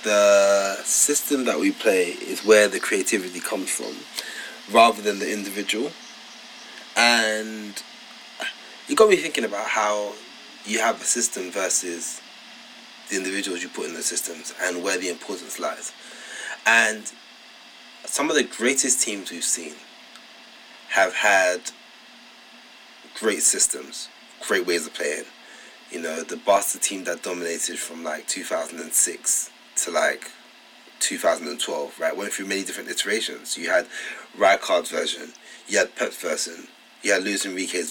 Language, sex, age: English, male, 20-39